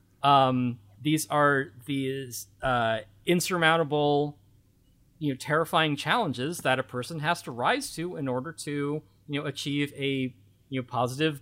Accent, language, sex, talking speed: American, English, male, 140 wpm